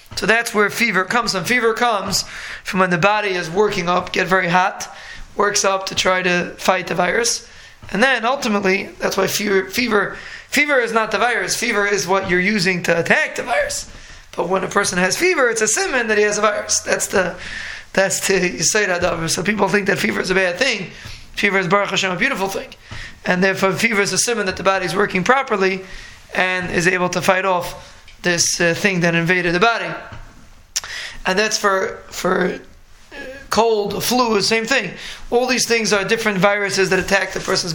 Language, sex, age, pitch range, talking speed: English, male, 20-39, 190-215 Hz, 205 wpm